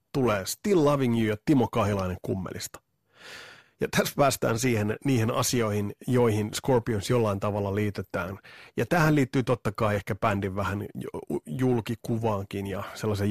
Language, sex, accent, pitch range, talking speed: Finnish, male, native, 100-125 Hz, 135 wpm